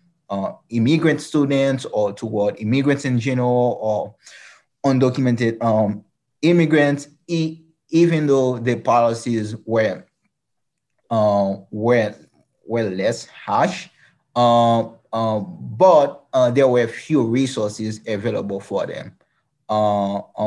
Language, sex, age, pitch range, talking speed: English, male, 20-39, 105-125 Hz, 105 wpm